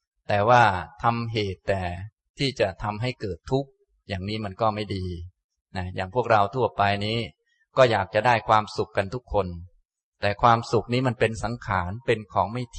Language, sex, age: Thai, male, 20-39